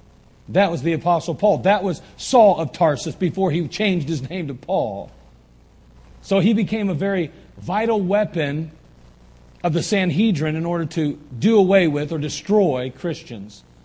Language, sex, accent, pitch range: English, male, American, 140-190 Hz